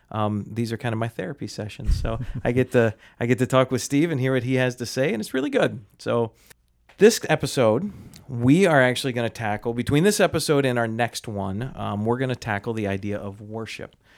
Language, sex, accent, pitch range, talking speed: English, male, American, 110-130 Hz, 220 wpm